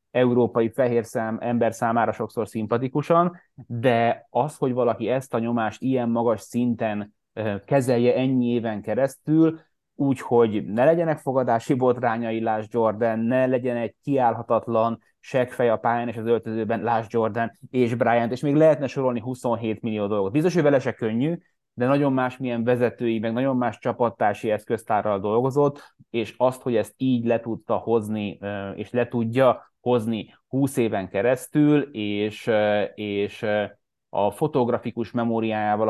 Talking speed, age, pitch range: 140 wpm, 20-39, 110-130 Hz